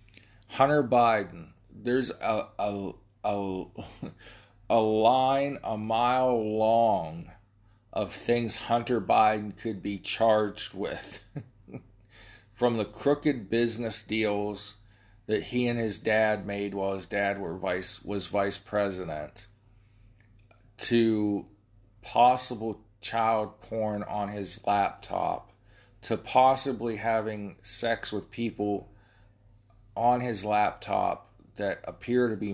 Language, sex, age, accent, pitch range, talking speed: English, male, 40-59, American, 100-110 Hz, 105 wpm